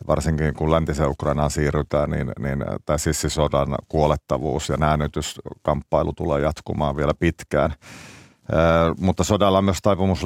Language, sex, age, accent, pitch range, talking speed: Finnish, male, 50-69, native, 70-80 Hz, 125 wpm